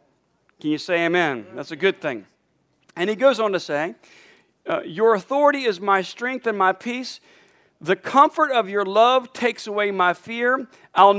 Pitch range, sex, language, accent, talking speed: 185-235 Hz, male, English, American, 170 wpm